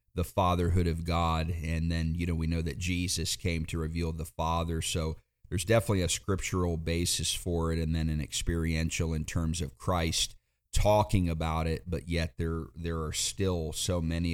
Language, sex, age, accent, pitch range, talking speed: English, male, 40-59, American, 80-90 Hz, 185 wpm